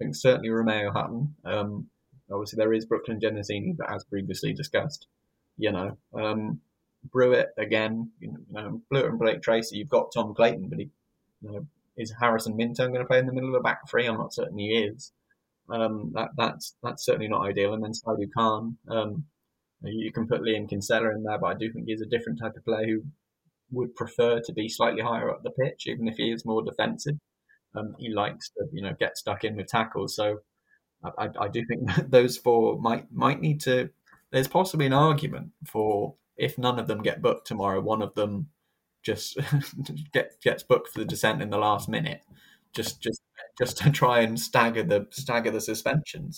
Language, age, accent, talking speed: English, 10-29, British, 205 wpm